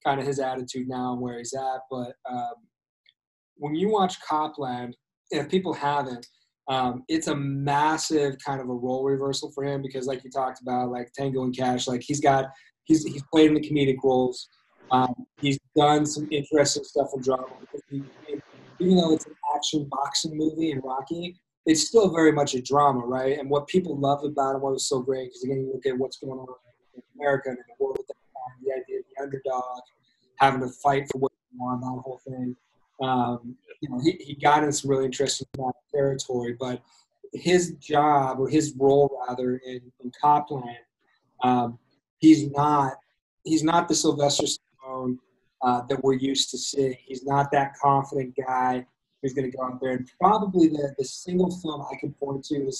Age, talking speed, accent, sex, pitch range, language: 20-39, 185 wpm, American, male, 130-150 Hz, English